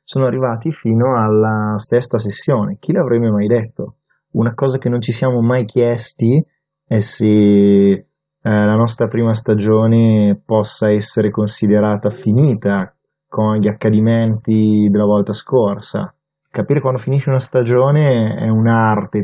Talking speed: 130 wpm